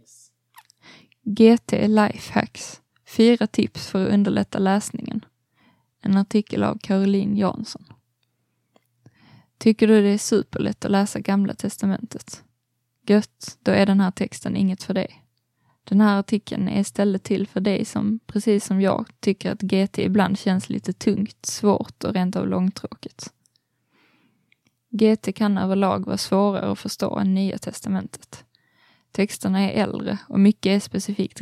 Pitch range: 190-210 Hz